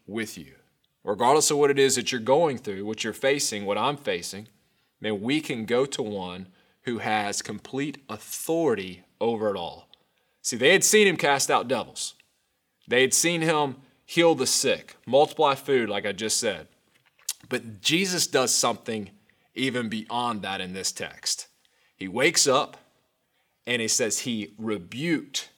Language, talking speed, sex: English, 160 wpm, male